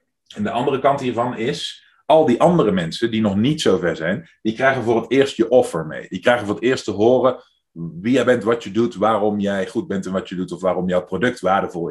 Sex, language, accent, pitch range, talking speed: male, Dutch, Dutch, 110-140 Hz, 245 wpm